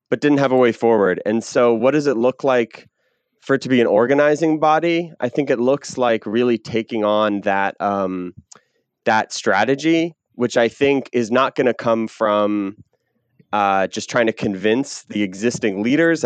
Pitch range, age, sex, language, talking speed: 105-130 Hz, 20-39, male, English, 180 wpm